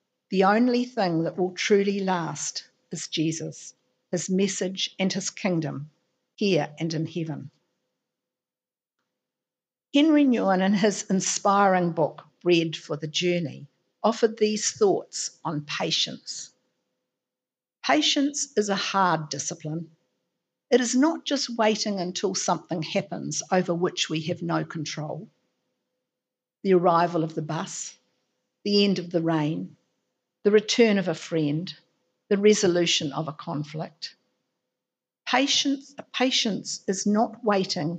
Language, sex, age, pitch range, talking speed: English, female, 50-69, 165-215 Hz, 120 wpm